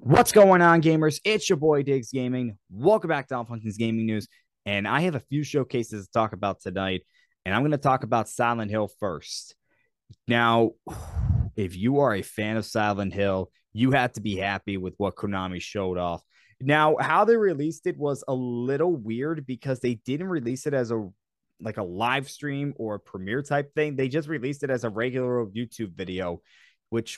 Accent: American